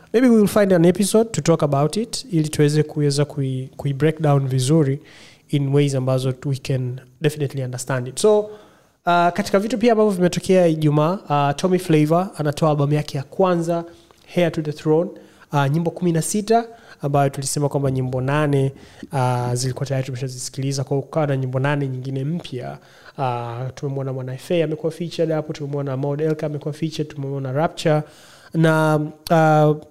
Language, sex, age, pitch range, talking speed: Swahili, male, 20-39, 140-165 Hz, 165 wpm